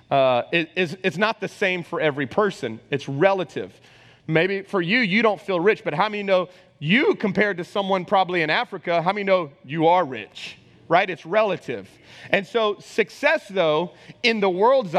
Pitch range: 160-215 Hz